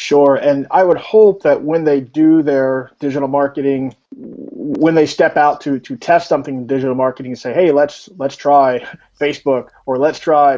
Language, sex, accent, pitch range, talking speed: English, male, American, 125-145 Hz, 185 wpm